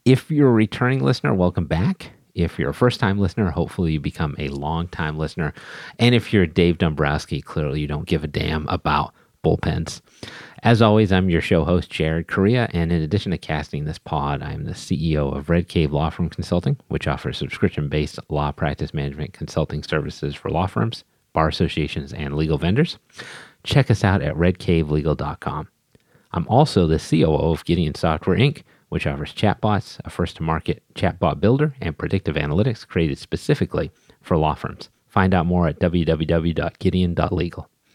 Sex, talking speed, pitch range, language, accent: male, 165 wpm, 80-105 Hz, English, American